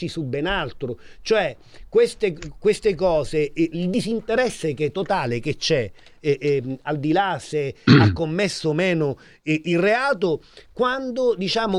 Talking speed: 145 wpm